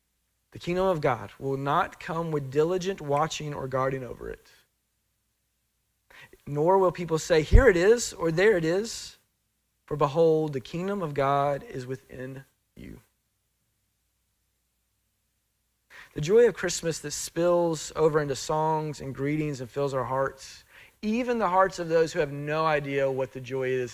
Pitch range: 125-165 Hz